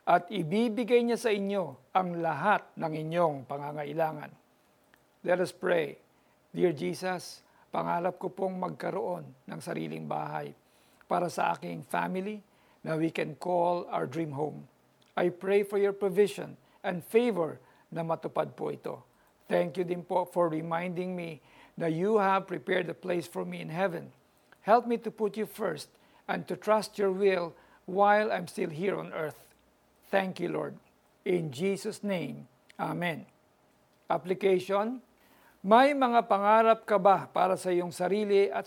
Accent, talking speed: native, 150 wpm